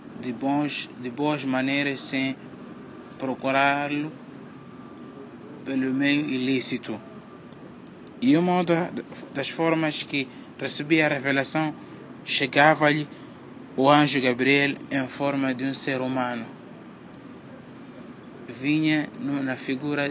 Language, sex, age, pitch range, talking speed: Portuguese, male, 20-39, 130-145 Hz, 90 wpm